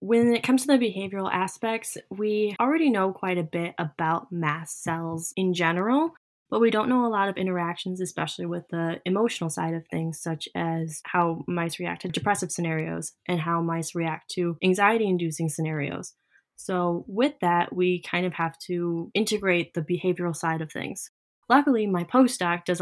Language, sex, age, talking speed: English, female, 10-29, 175 wpm